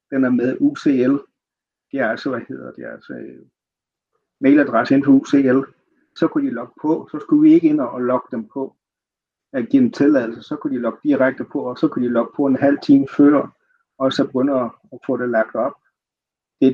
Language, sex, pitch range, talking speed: Danish, male, 125-195 Hz, 220 wpm